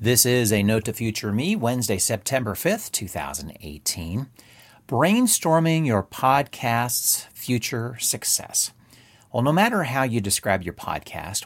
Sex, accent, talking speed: male, American, 125 wpm